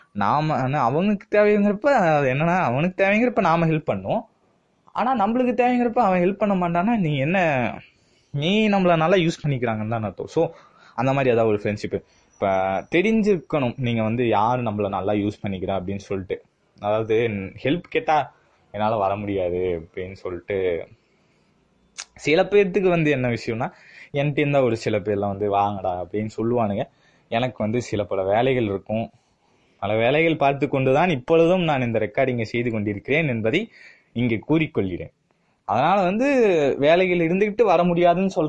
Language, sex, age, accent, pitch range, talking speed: Tamil, male, 20-39, native, 110-175 Hz, 140 wpm